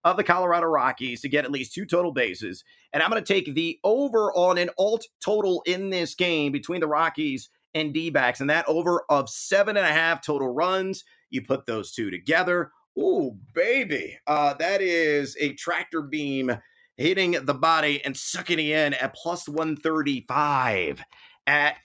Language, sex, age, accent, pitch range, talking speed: English, male, 30-49, American, 140-175 Hz, 175 wpm